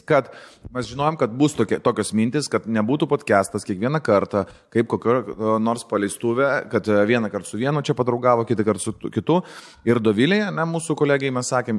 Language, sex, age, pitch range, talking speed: English, male, 30-49, 100-135 Hz, 175 wpm